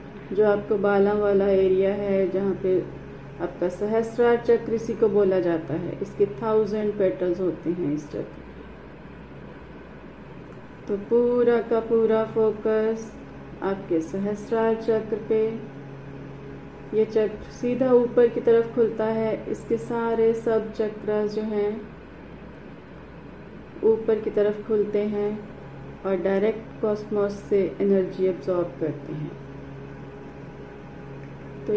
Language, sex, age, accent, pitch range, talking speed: Hindi, female, 40-59, native, 195-225 Hz, 115 wpm